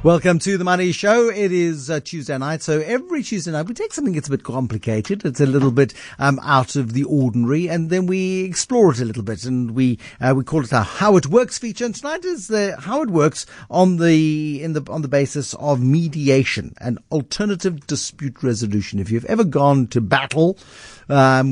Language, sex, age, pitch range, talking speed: English, male, 50-69, 135-190 Hz, 210 wpm